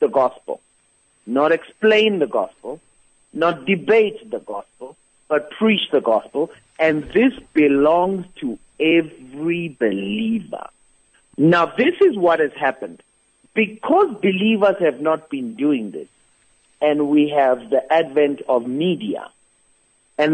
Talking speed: 120 wpm